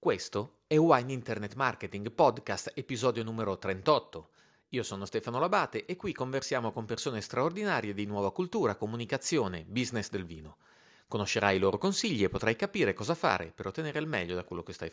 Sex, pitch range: male, 95-130 Hz